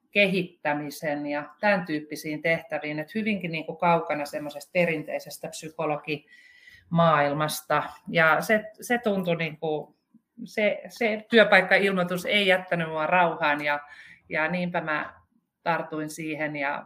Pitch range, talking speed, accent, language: 155-210 Hz, 115 wpm, native, Finnish